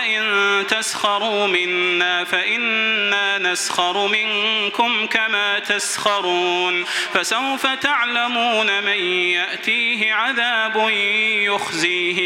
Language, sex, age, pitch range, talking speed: Arabic, male, 30-49, 200-235 Hz, 70 wpm